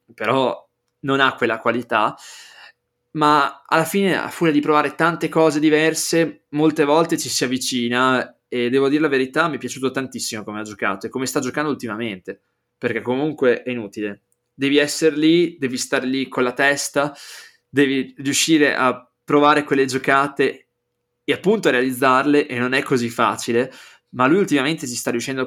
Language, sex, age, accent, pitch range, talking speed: Italian, male, 20-39, native, 120-150 Hz, 165 wpm